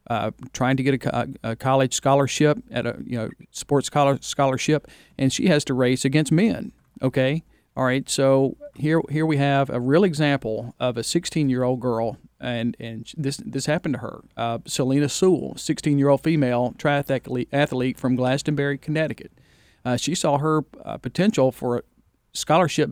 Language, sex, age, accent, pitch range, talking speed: English, male, 40-59, American, 125-150 Hz, 180 wpm